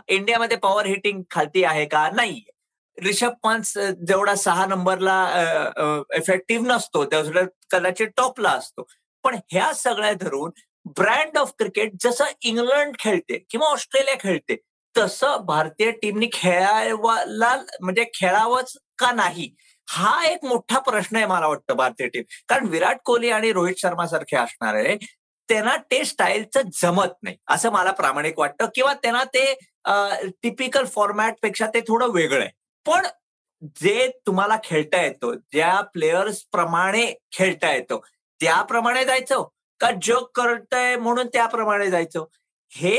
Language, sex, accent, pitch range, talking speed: Marathi, male, native, 190-255 Hz, 130 wpm